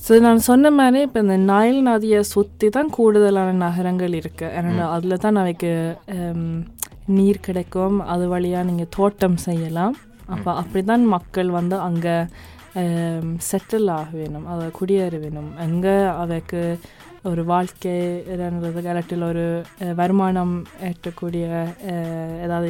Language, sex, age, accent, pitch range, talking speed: Tamil, female, 20-39, native, 170-205 Hz, 120 wpm